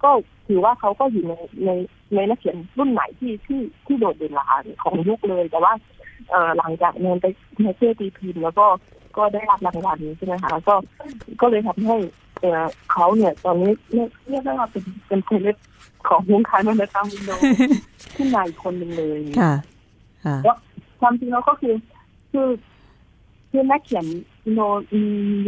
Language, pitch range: Thai, 180-240 Hz